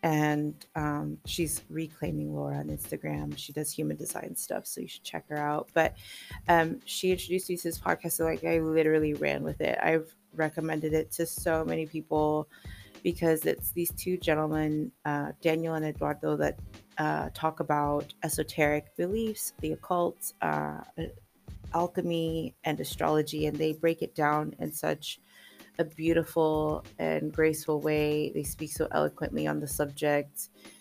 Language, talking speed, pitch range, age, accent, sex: English, 155 wpm, 95-160 Hz, 20-39, American, female